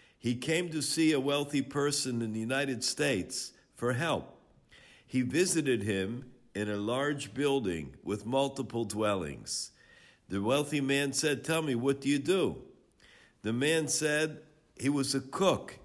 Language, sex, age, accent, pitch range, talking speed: English, male, 60-79, American, 115-145 Hz, 150 wpm